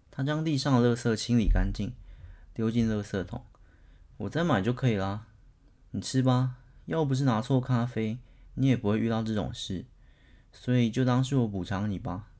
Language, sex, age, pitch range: Chinese, male, 20-39, 100-125 Hz